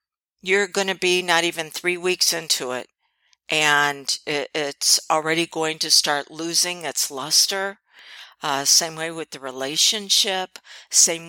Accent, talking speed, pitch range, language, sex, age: American, 145 wpm, 160-200 Hz, English, female, 50-69